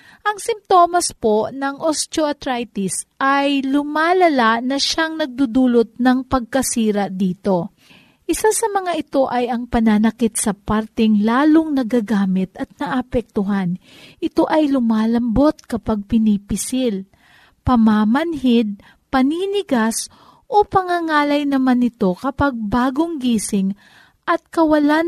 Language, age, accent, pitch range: Filipino, 40-59, native, 220-295 Hz